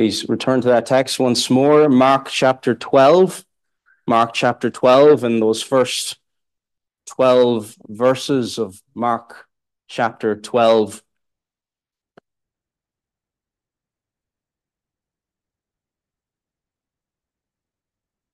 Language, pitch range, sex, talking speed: English, 115-140 Hz, male, 70 wpm